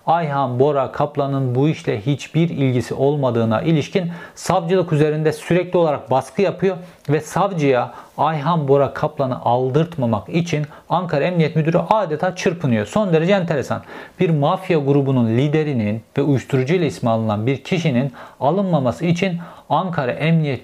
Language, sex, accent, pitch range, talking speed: Turkish, male, native, 135-175 Hz, 125 wpm